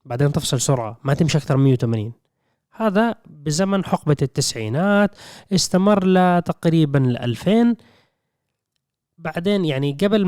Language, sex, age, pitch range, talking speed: Arabic, male, 20-39, 130-170 Hz, 110 wpm